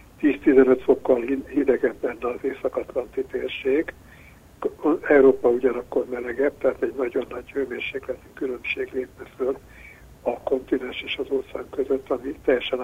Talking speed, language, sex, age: 115 wpm, Hungarian, male, 60-79